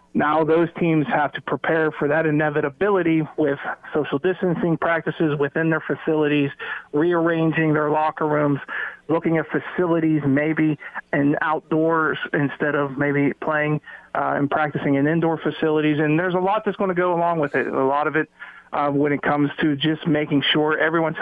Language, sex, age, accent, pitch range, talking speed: English, male, 40-59, American, 145-160 Hz, 170 wpm